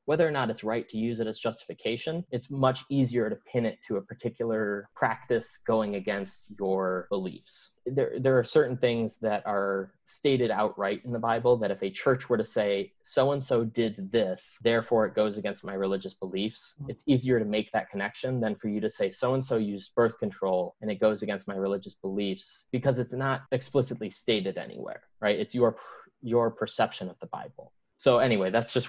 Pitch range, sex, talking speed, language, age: 105-130 Hz, male, 195 wpm, English, 20-39